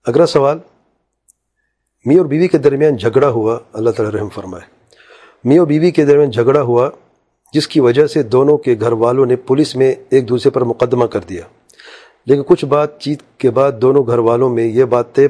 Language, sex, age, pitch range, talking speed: English, male, 40-59, 125-150 Hz, 175 wpm